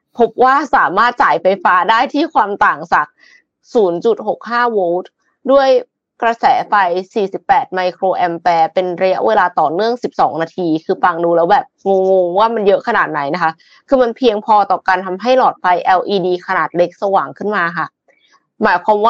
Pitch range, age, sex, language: 185-250 Hz, 20-39, female, Thai